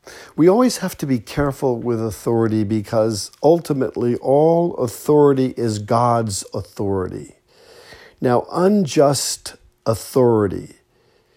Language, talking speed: English, 95 wpm